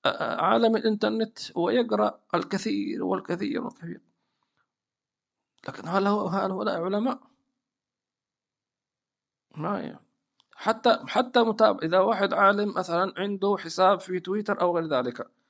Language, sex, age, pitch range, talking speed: English, male, 50-69, 195-245 Hz, 95 wpm